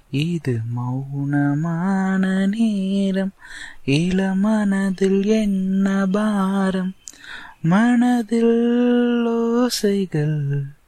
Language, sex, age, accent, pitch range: Tamil, male, 20-39, native, 130-195 Hz